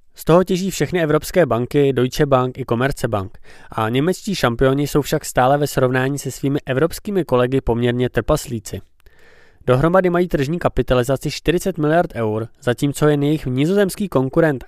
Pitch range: 120-155 Hz